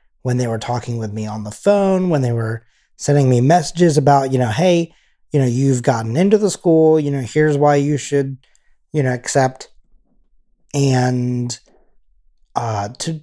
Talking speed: 170 wpm